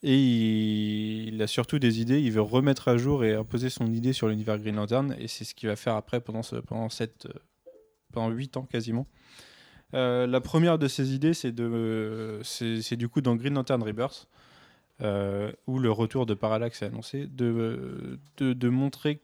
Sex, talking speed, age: male, 195 wpm, 20-39